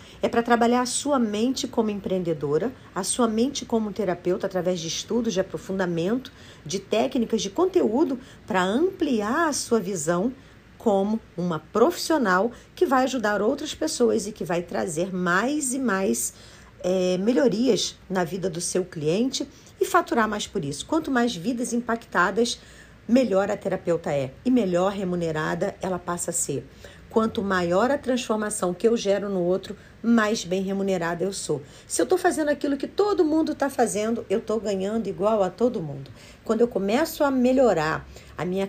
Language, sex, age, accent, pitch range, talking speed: Portuguese, female, 50-69, Brazilian, 185-245 Hz, 165 wpm